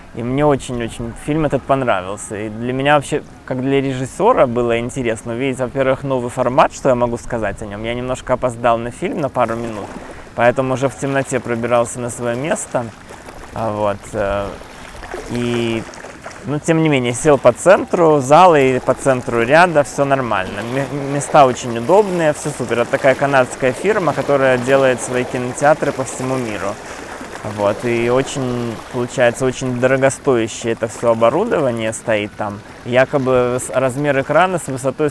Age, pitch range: 20-39, 115-140 Hz